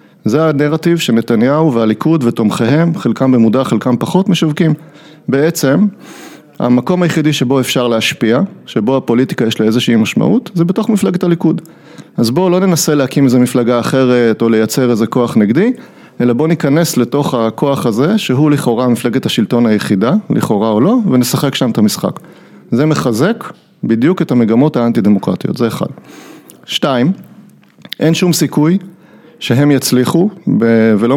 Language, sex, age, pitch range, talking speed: Hebrew, male, 30-49, 120-170 Hz, 135 wpm